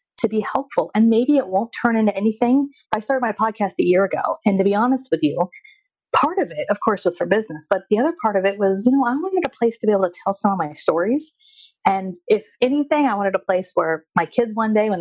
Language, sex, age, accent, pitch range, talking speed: English, female, 30-49, American, 180-245 Hz, 265 wpm